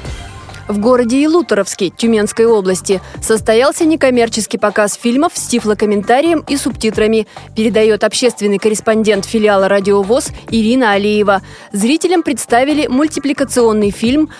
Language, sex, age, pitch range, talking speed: Russian, female, 20-39, 210-275 Hz, 100 wpm